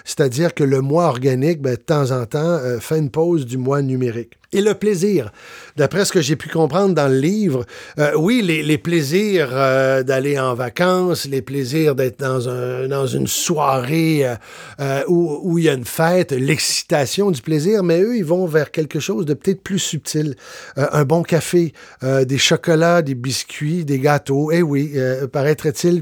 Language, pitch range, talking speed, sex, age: French, 135-170 Hz, 190 wpm, male, 50-69